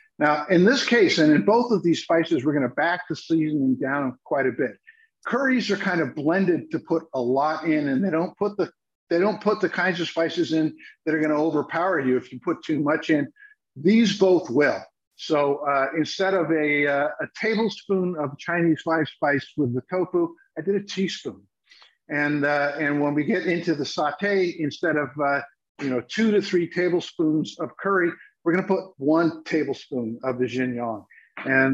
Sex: male